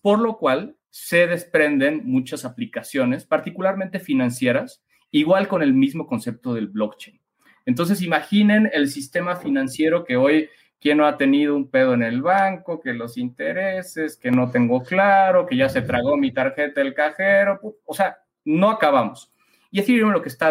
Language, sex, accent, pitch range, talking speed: Spanish, male, Mexican, 125-205 Hz, 165 wpm